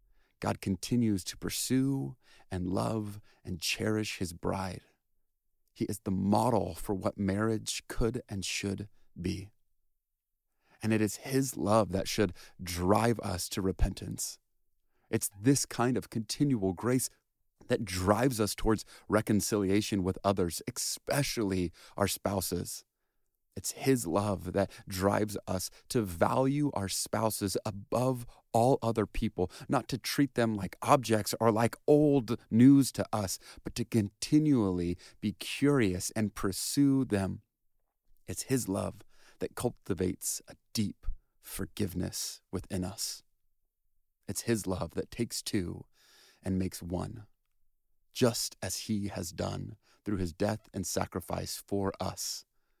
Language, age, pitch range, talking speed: English, 30-49, 95-115 Hz, 130 wpm